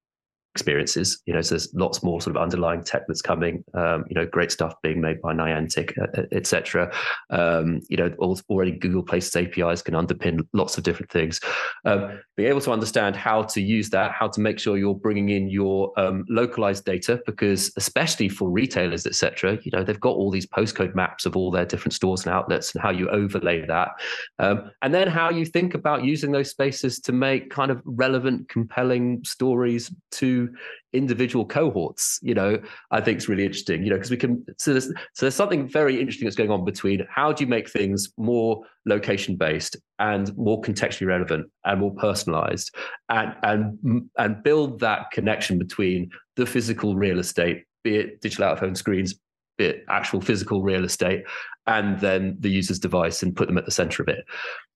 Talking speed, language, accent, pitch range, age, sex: 195 wpm, English, British, 95-120 Hz, 20-39, male